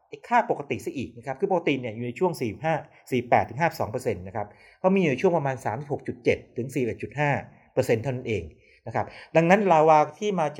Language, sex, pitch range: Thai, male, 125-165 Hz